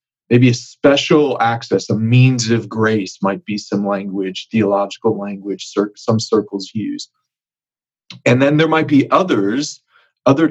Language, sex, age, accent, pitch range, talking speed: English, male, 30-49, American, 110-130 Hz, 135 wpm